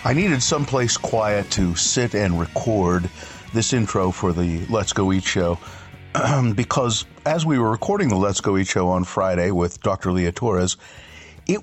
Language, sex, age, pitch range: English, male, 50-69, 90-120 Hz